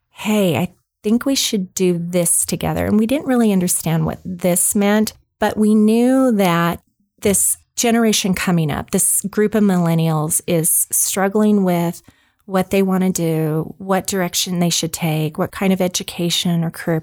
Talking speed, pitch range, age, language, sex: 165 wpm, 175-205 Hz, 30-49, English, female